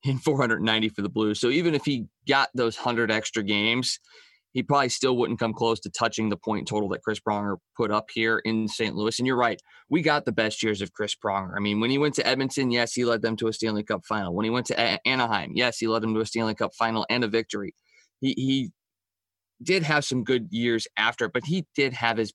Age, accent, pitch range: 20-39, American, 110-135 Hz